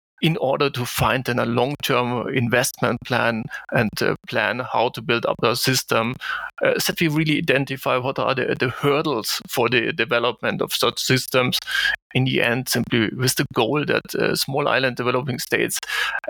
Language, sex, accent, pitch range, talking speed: English, male, German, 130-150 Hz, 175 wpm